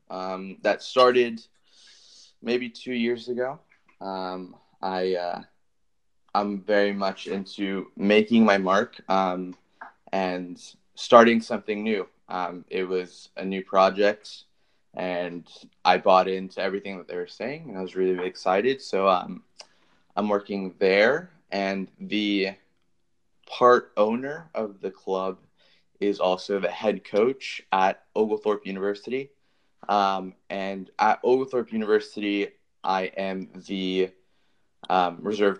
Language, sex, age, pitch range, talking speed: English, male, 20-39, 90-105 Hz, 125 wpm